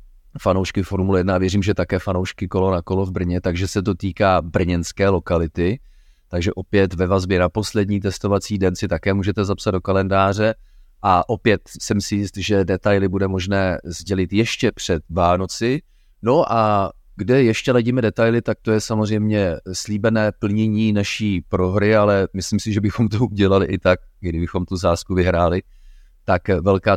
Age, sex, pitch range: 30-49, male, 90-105 Hz